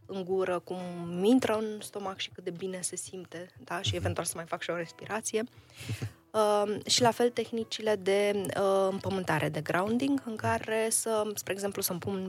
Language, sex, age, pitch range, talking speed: Romanian, female, 20-39, 170-210 Hz, 185 wpm